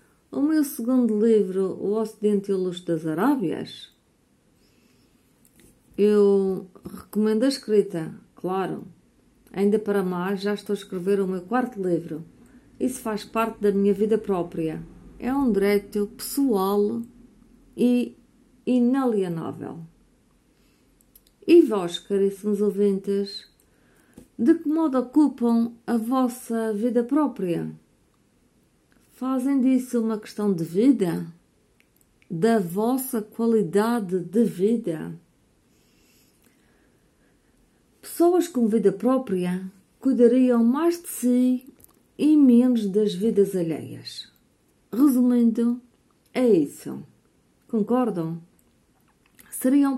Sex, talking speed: female, 95 wpm